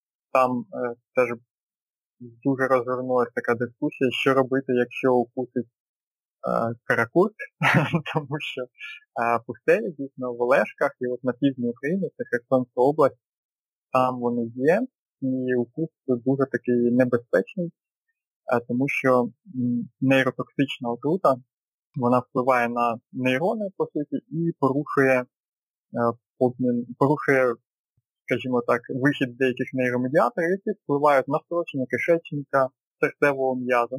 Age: 30-49